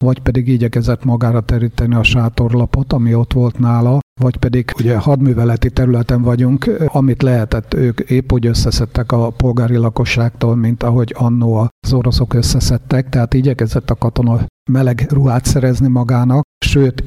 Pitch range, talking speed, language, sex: 120-135 Hz, 145 wpm, Hungarian, male